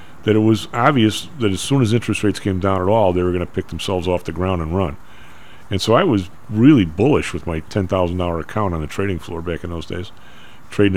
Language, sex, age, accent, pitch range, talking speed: English, male, 40-59, American, 95-135 Hz, 240 wpm